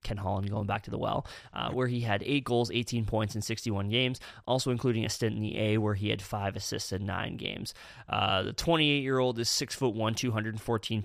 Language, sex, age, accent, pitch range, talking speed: English, male, 20-39, American, 105-130 Hz, 240 wpm